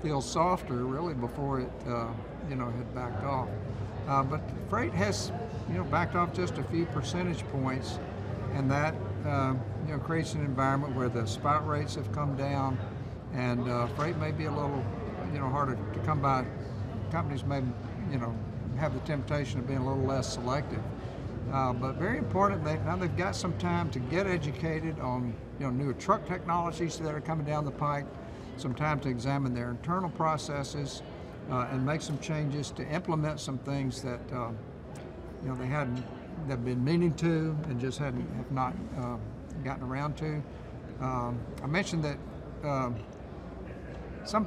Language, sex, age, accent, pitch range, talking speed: English, male, 60-79, American, 120-150 Hz, 175 wpm